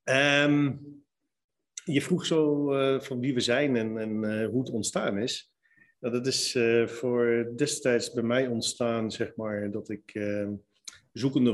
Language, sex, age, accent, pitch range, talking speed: Dutch, male, 40-59, Dutch, 110-130 Hz, 160 wpm